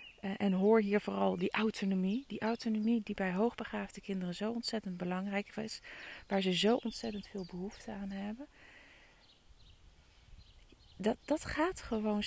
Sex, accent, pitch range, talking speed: female, Dutch, 205-265 Hz, 135 wpm